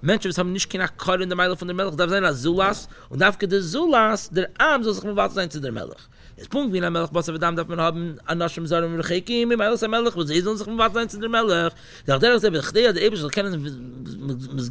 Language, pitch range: English, 150-215 Hz